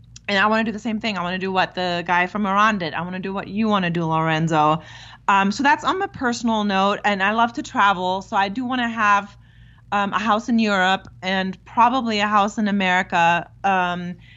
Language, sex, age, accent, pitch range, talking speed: English, female, 30-49, American, 180-220 Hz, 240 wpm